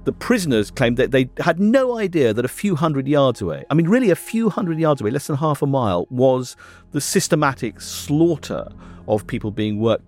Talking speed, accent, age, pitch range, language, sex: 210 wpm, British, 40-59, 100-145 Hz, English, male